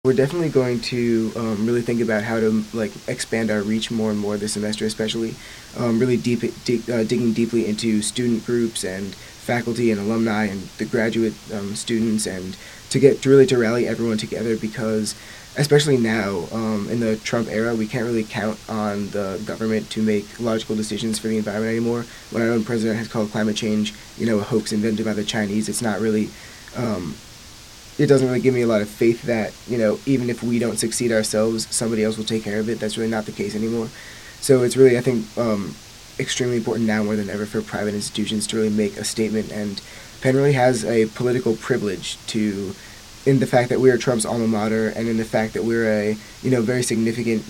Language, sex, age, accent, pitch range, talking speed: English, male, 20-39, American, 110-120 Hz, 210 wpm